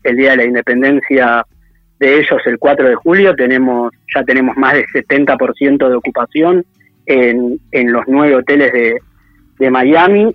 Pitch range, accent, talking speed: 125-175 Hz, Argentinian, 155 wpm